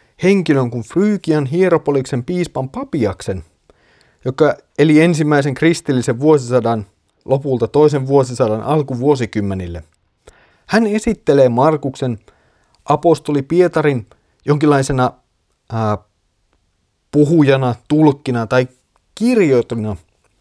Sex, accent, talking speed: male, native, 75 wpm